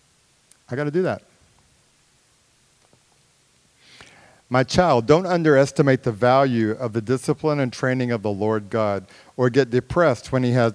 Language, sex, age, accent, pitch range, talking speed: English, male, 50-69, American, 110-140 Hz, 145 wpm